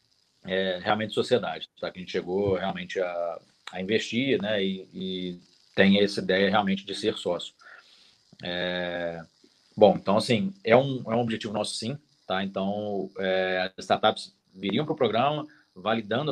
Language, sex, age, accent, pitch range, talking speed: Portuguese, male, 40-59, Brazilian, 95-115 Hz, 160 wpm